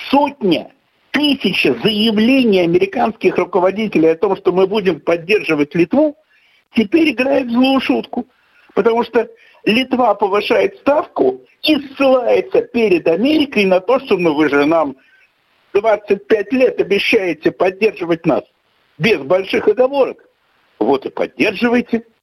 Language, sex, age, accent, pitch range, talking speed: Russian, male, 60-79, native, 175-265 Hz, 120 wpm